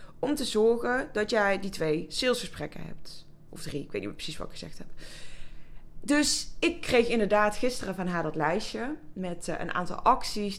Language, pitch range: Dutch, 175-225 Hz